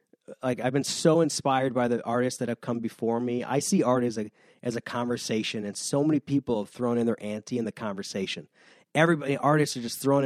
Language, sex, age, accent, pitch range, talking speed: English, male, 30-49, American, 120-145 Hz, 220 wpm